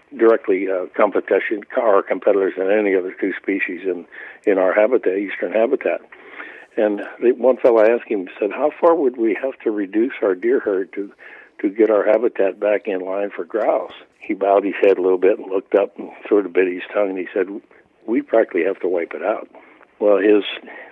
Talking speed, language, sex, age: 200 wpm, English, male, 60-79